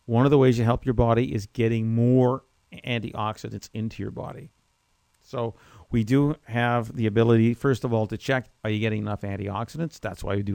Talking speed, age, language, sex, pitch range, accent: 200 wpm, 50-69, English, male, 105-130 Hz, American